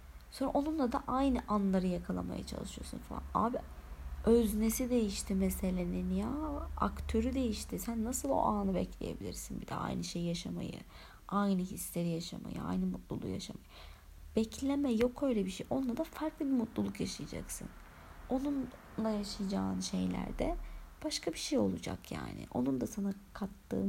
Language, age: Turkish, 30-49